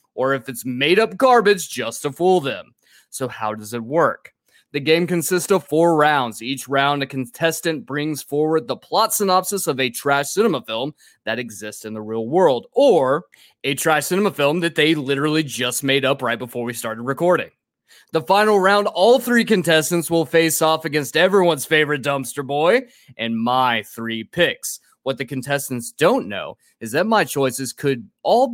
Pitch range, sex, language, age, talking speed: 130-180 Hz, male, English, 20-39, 180 wpm